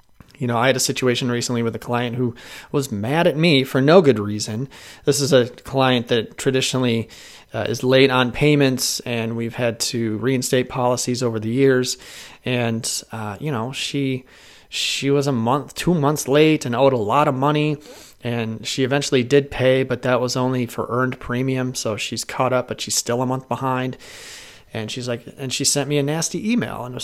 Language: English